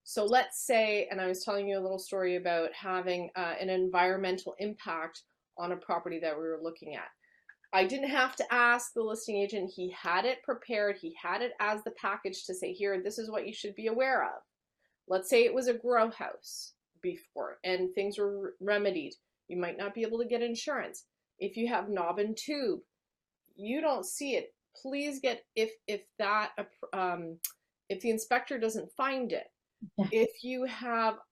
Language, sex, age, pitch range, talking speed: English, female, 30-49, 185-235 Hz, 190 wpm